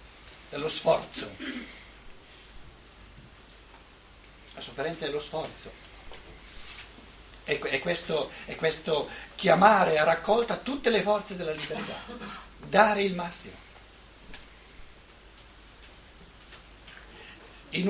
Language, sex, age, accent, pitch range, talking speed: Italian, male, 60-79, native, 145-210 Hz, 75 wpm